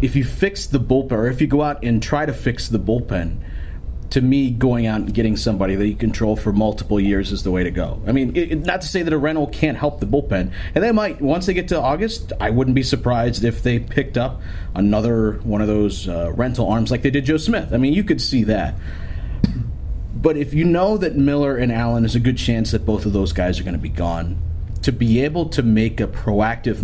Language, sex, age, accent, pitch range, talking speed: English, male, 30-49, American, 95-130 Hz, 245 wpm